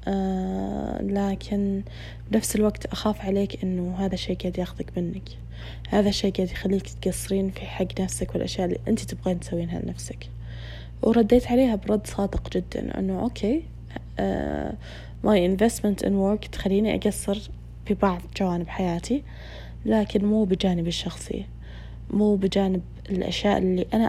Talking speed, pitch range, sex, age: 125 wpm, 170-205 Hz, female, 20-39